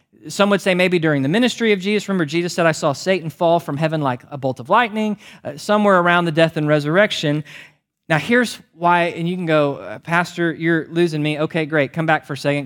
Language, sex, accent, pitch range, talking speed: English, male, American, 130-165 Hz, 230 wpm